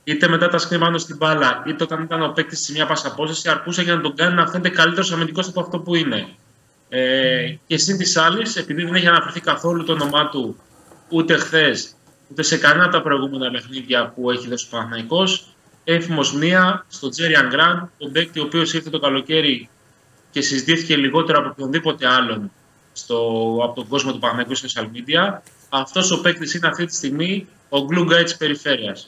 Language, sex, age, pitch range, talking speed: Greek, male, 20-39, 135-165 Hz, 185 wpm